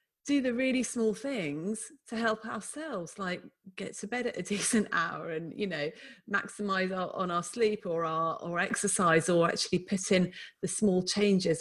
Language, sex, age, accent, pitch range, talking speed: English, female, 30-49, British, 170-220 Hz, 175 wpm